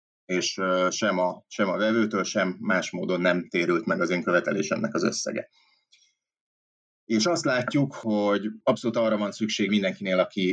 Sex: male